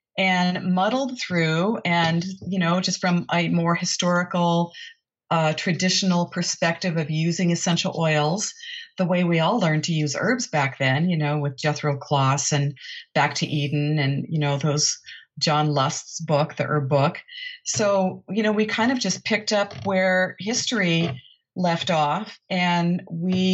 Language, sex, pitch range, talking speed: English, female, 160-195 Hz, 160 wpm